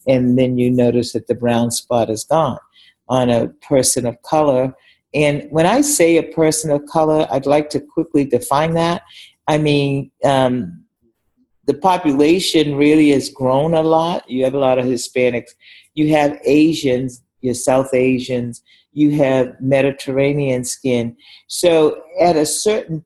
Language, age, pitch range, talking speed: English, 50-69, 130-165 Hz, 155 wpm